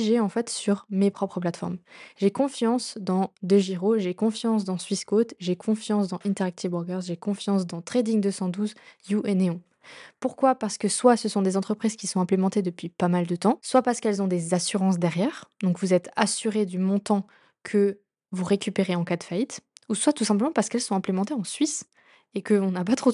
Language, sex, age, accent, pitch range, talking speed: French, female, 20-39, French, 190-225 Hz, 200 wpm